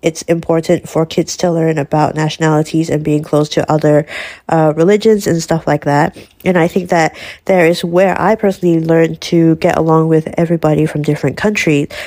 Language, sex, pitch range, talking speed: Malay, female, 160-185 Hz, 185 wpm